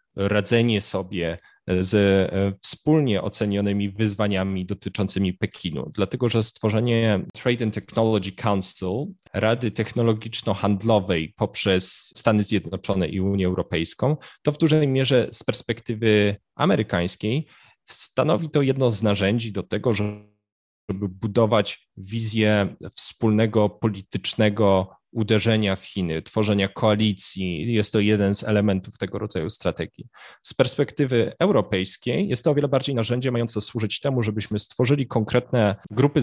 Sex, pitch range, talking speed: male, 100-120 Hz, 120 wpm